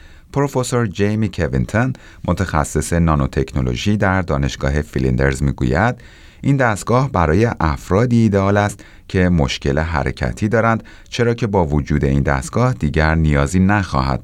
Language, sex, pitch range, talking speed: Persian, male, 70-95 Hz, 120 wpm